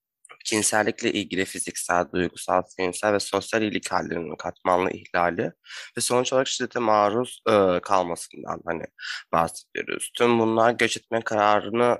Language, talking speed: Turkish, 120 wpm